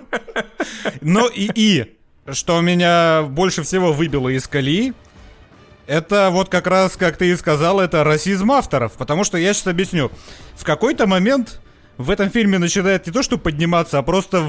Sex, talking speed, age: male, 160 wpm, 30-49